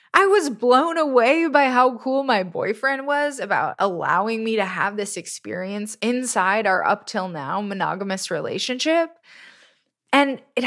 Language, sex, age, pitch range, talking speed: English, female, 20-39, 185-255 Hz, 135 wpm